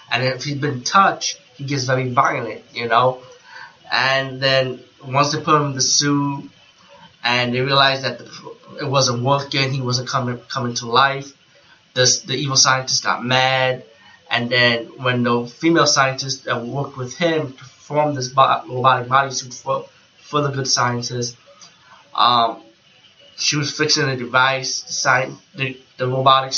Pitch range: 125-140 Hz